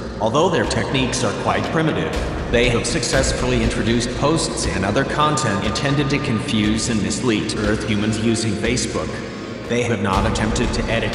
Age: 30-49